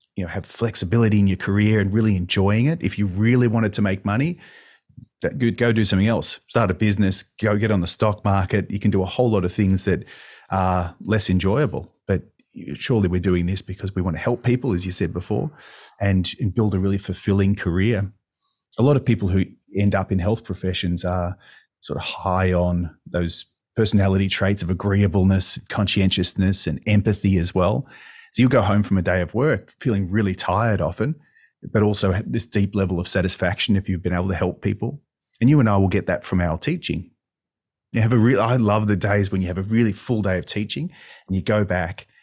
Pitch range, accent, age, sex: 95-115 Hz, Australian, 30-49, male